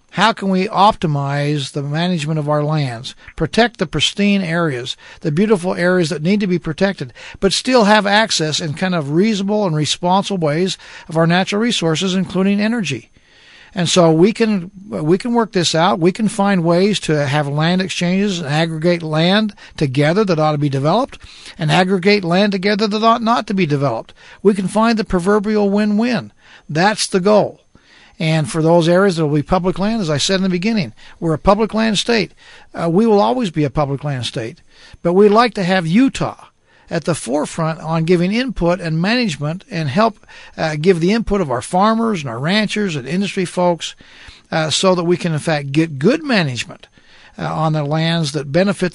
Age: 60-79